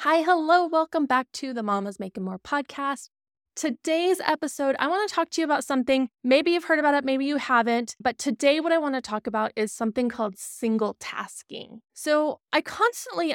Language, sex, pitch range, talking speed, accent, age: English, female, 225-290 Hz, 190 wpm, American, 20-39